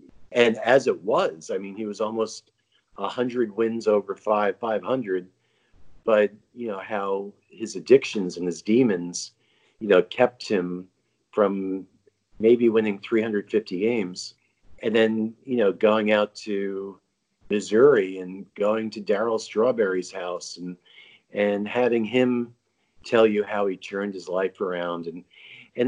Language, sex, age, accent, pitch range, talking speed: English, male, 50-69, American, 100-120 Hz, 140 wpm